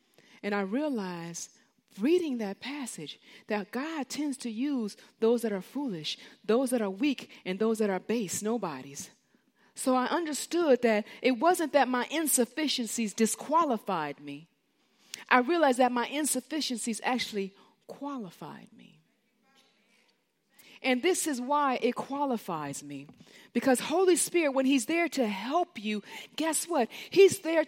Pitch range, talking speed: 215-280 Hz, 140 wpm